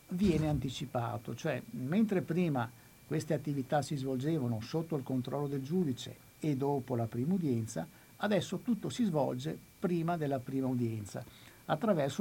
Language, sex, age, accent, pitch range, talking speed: Italian, male, 60-79, native, 125-165 Hz, 140 wpm